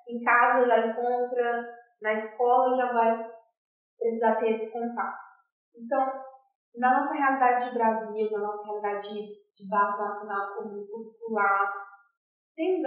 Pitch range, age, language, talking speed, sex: 175-235 Hz, 10-29, Portuguese, 135 wpm, female